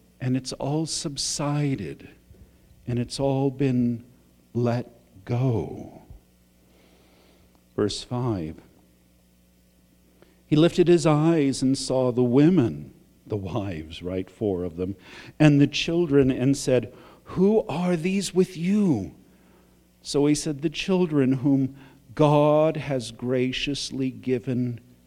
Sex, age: male, 50-69